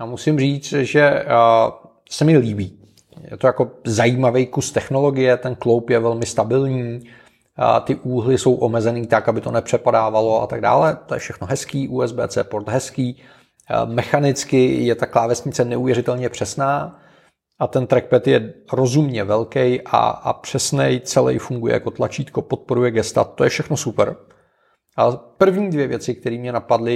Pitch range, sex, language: 115-125 Hz, male, Czech